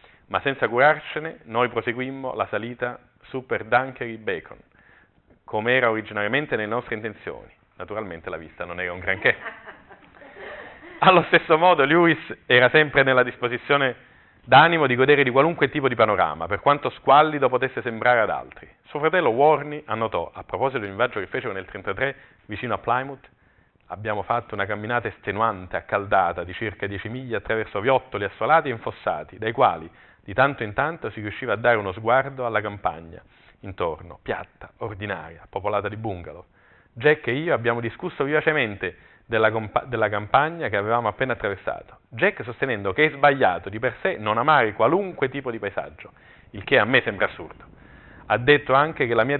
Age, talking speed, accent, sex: 40-59, 170 wpm, native, male